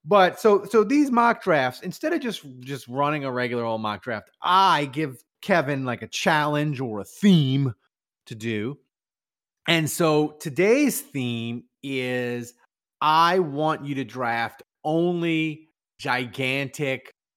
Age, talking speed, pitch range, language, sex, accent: 30-49, 135 wpm, 120-165 Hz, English, male, American